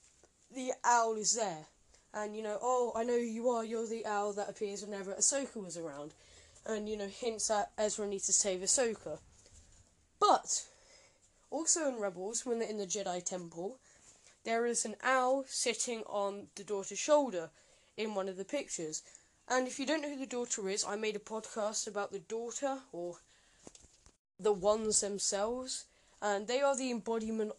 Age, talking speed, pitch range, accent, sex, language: 10-29, 175 wpm, 200-245 Hz, British, female, English